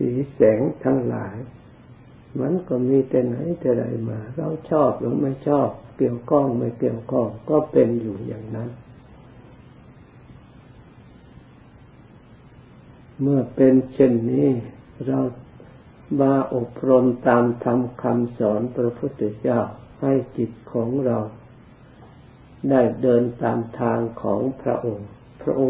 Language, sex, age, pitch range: Thai, male, 50-69, 120-130 Hz